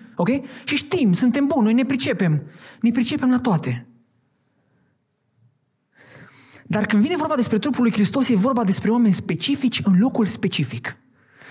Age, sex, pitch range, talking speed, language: 20-39, male, 155-215 Hz, 140 wpm, Romanian